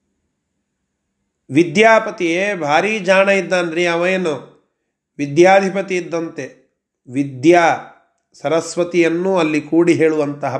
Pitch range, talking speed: 145-195 Hz, 70 wpm